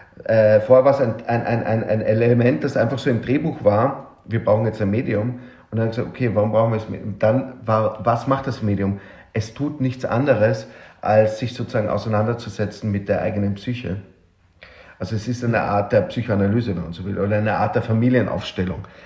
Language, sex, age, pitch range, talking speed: German, male, 40-59, 100-125 Hz, 210 wpm